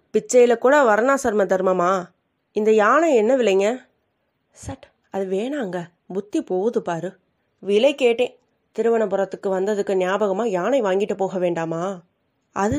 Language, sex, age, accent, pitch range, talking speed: Tamil, female, 20-39, native, 185-230 Hz, 115 wpm